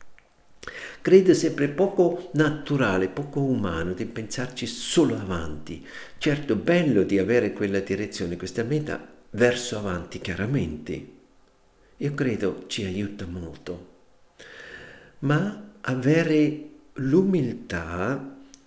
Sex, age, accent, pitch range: male, 50-69, native, 95-145 Hz